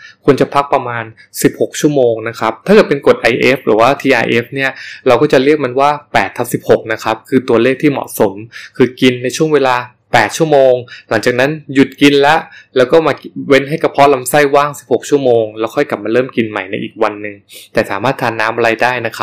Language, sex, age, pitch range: Thai, male, 20-39, 115-145 Hz